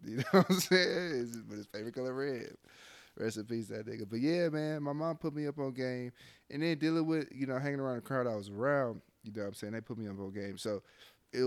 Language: English